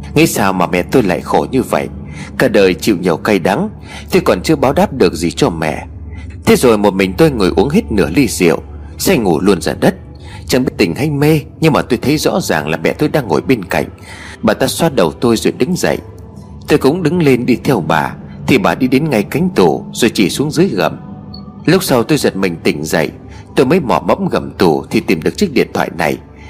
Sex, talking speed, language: male, 240 wpm, Vietnamese